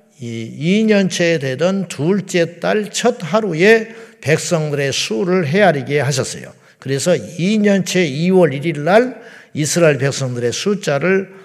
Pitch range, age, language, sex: 145-190 Hz, 50-69, Korean, male